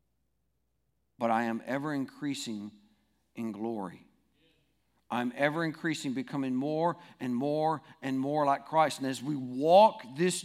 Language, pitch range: English, 125-160 Hz